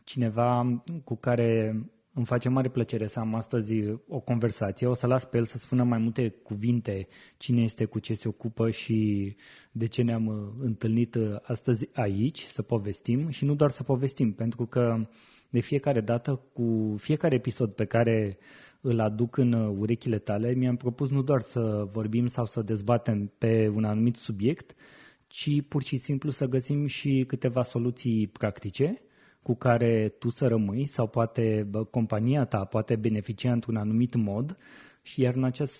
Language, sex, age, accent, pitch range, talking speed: Romanian, male, 20-39, native, 110-130 Hz, 165 wpm